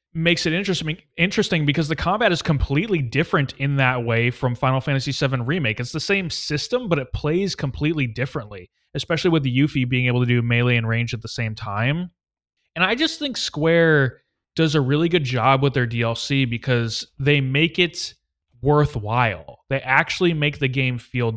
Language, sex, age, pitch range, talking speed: English, male, 20-39, 120-155 Hz, 185 wpm